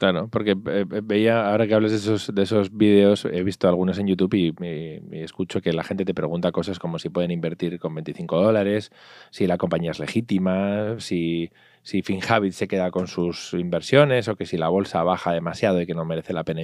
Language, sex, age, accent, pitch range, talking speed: Spanish, male, 20-39, Spanish, 85-105 Hz, 215 wpm